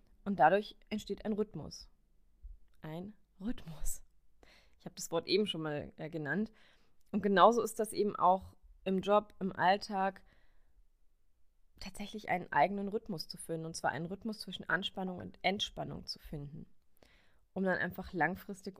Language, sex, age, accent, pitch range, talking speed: German, female, 20-39, German, 155-200 Hz, 145 wpm